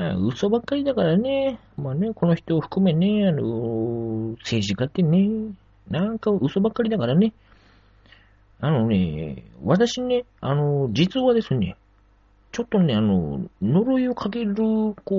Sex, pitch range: male, 140-225 Hz